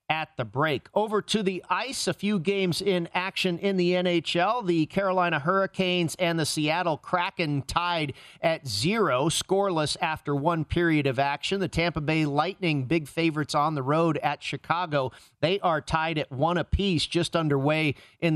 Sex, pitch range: male, 145-175 Hz